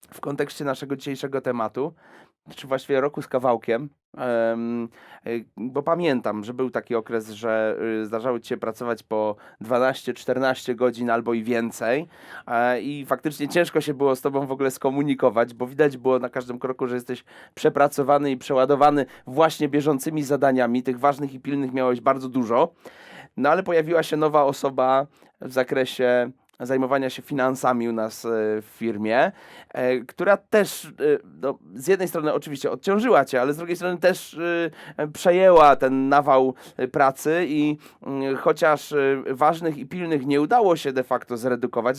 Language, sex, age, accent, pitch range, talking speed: Polish, male, 30-49, native, 125-150 Hz, 145 wpm